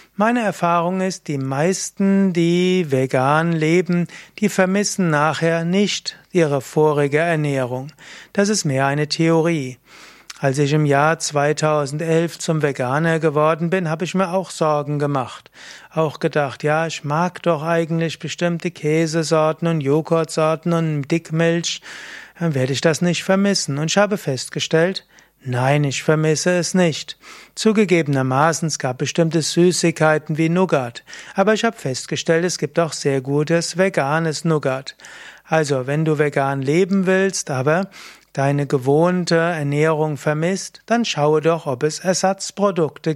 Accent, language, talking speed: German, German, 135 wpm